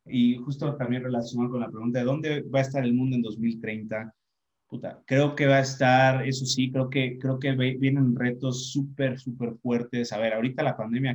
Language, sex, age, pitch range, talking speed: Spanish, male, 30-49, 115-135 Hz, 210 wpm